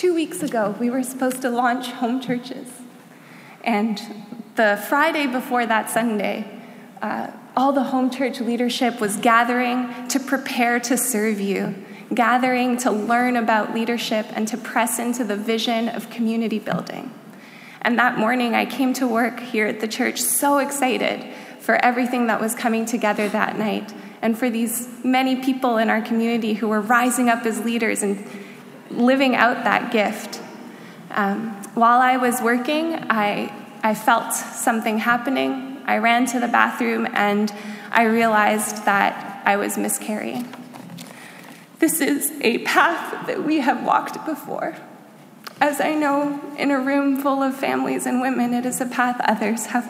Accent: American